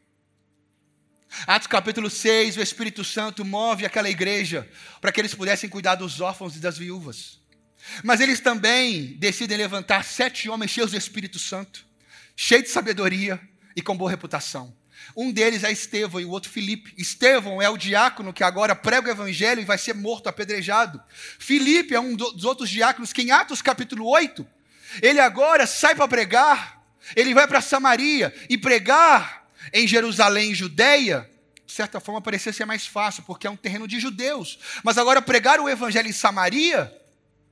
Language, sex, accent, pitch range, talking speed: Portuguese, male, Brazilian, 200-250 Hz, 170 wpm